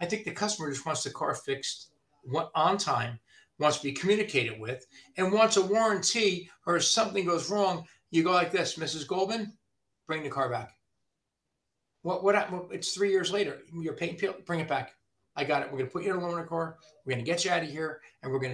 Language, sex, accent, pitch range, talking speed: English, male, American, 130-175 Hz, 225 wpm